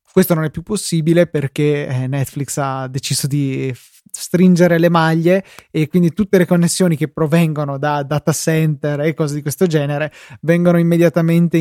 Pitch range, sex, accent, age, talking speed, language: 145-170 Hz, male, native, 20-39, 155 wpm, Italian